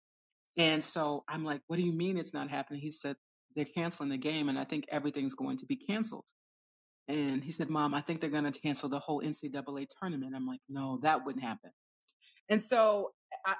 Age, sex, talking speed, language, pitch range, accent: 30-49, female, 210 wpm, English, 145-180 Hz, American